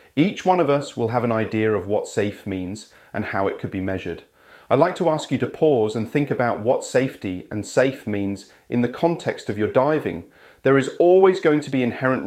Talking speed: 225 wpm